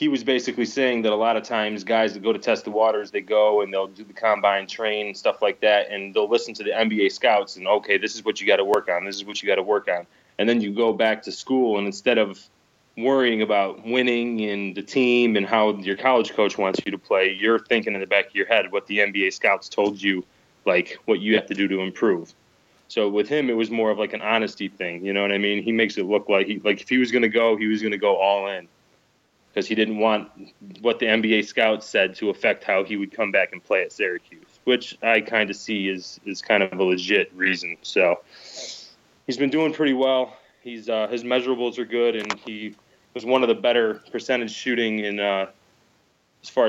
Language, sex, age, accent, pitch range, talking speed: English, male, 30-49, American, 100-120 Hz, 250 wpm